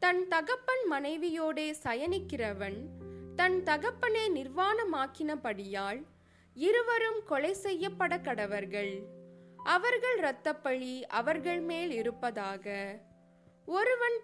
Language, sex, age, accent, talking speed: Tamil, female, 20-39, native, 70 wpm